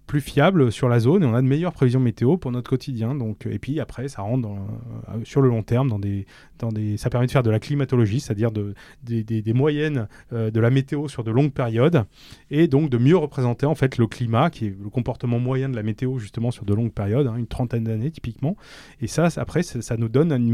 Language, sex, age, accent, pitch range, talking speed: French, male, 20-39, French, 115-140 Hz, 250 wpm